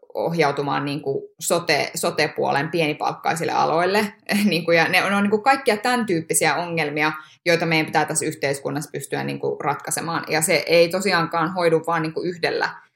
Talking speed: 135 wpm